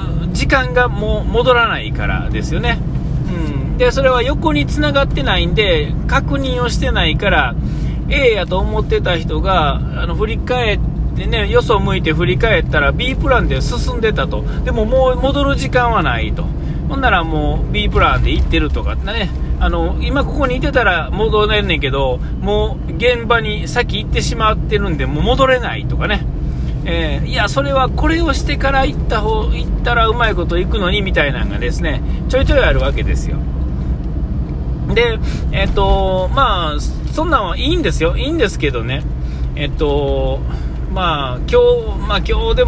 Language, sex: Japanese, male